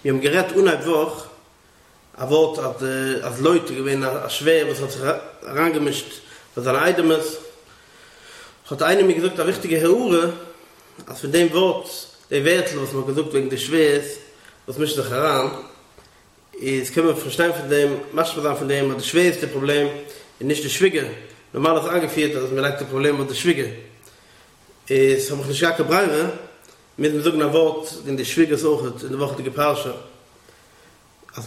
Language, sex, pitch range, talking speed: English, male, 135-165 Hz, 205 wpm